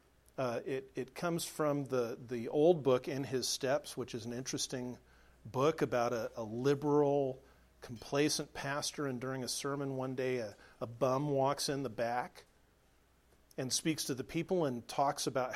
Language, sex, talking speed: English, male, 170 wpm